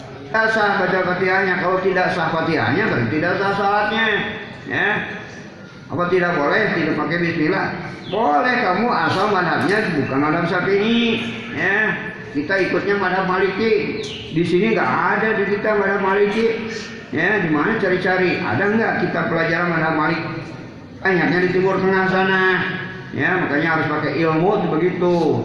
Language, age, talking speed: Indonesian, 50-69, 145 wpm